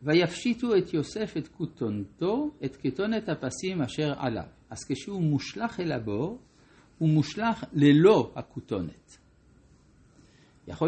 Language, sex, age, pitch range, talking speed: Hebrew, male, 60-79, 125-165 Hz, 110 wpm